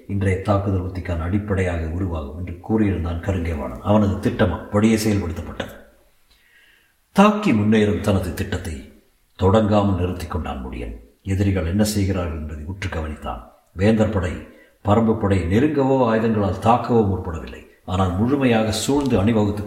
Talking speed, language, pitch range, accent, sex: 115 wpm, Tamil, 90-110 Hz, native, male